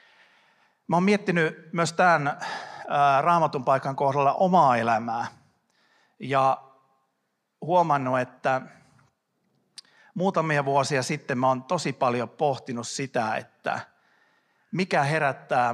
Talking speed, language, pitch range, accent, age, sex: 95 wpm, Finnish, 125-165 Hz, native, 50-69, male